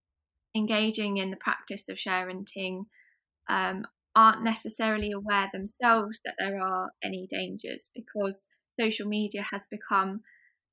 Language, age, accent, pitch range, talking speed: English, 20-39, British, 185-215 Hz, 115 wpm